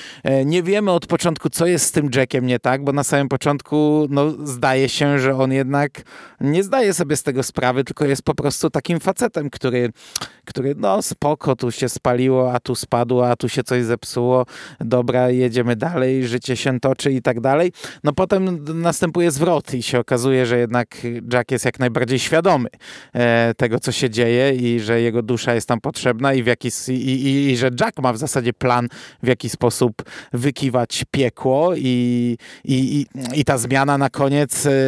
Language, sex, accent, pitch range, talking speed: Polish, male, native, 125-145 Hz, 180 wpm